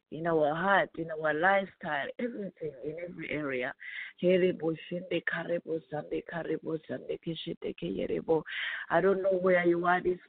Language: English